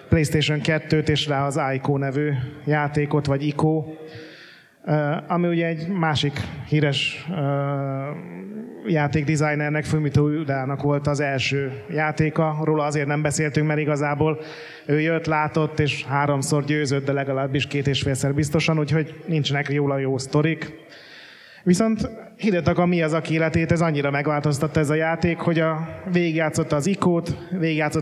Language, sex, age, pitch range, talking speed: Hungarian, male, 30-49, 145-170 Hz, 140 wpm